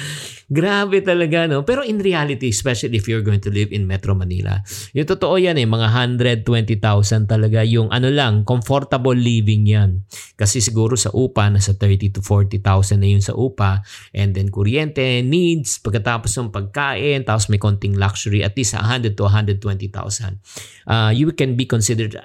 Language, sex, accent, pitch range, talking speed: English, male, Filipino, 100-130 Hz, 165 wpm